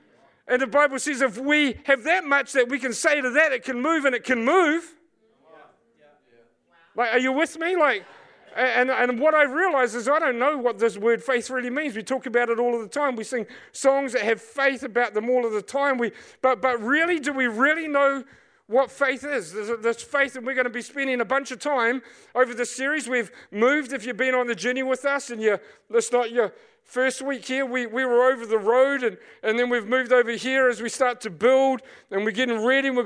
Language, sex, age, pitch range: English, male, 40-59, 235-280 Hz